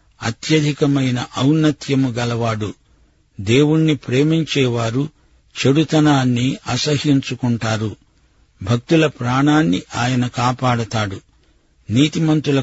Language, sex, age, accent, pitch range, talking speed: Telugu, male, 50-69, native, 120-145 Hz, 55 wpm